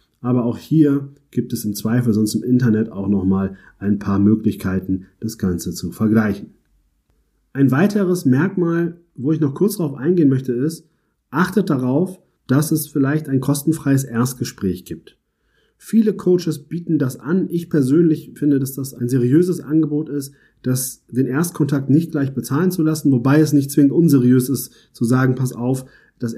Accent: German